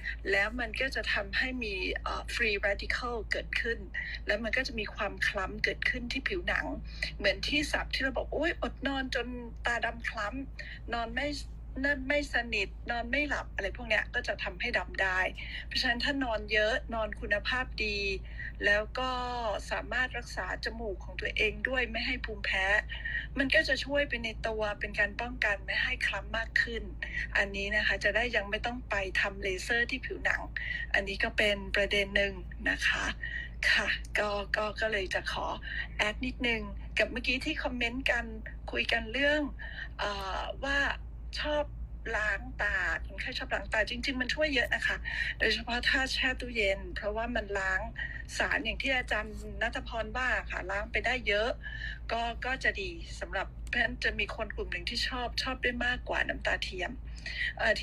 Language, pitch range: Thai, 215-285 Hz